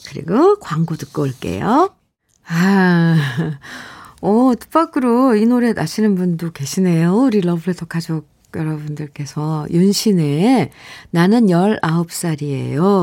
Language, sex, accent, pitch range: Korean, female, native, 155-205 Hz